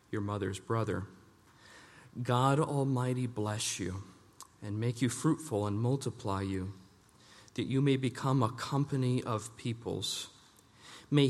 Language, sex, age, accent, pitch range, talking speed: English, male, 40-59, American, 105-125 Hz, 120 wpm